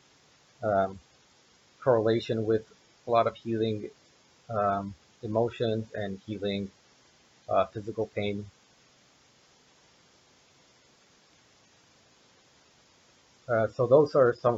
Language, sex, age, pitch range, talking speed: English, male, 30-49, 100-115 Hz, 80 wpm